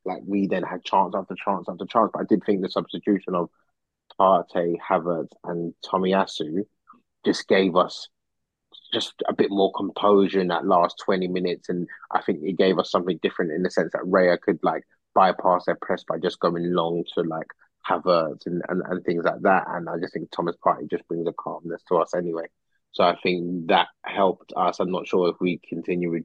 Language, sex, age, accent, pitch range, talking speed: English, male, 20-39, British, 90-105 Hz, 205 wpm